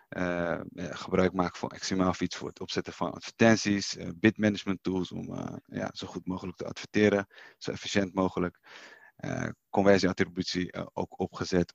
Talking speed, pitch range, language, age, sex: 165 wpm, 90-110 Hz, Dutch, 30-49, male